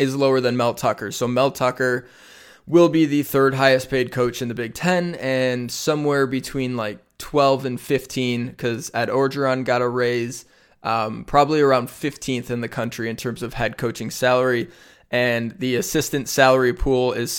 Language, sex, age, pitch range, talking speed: English, male, 20-39, 120-140 Hz, 175 wpm